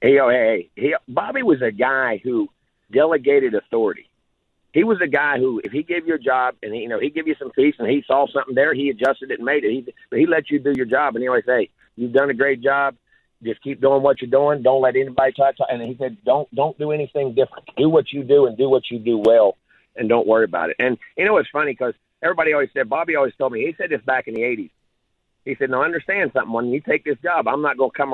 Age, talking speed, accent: 50-69, 275 wpm, American